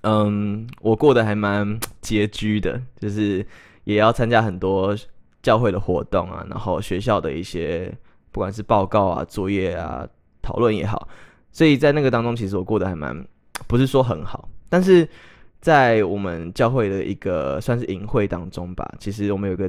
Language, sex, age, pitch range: Chinese, male, 20-39, 95-115 Hz